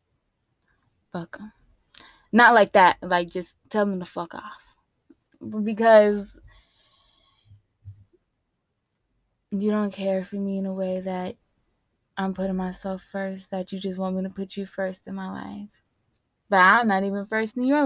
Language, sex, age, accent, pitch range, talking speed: English, female, 20-39, American, 180-205 Hz, 150 wpm